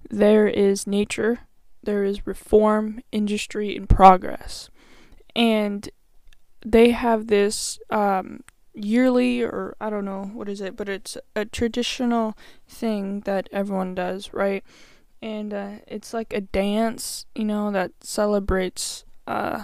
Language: English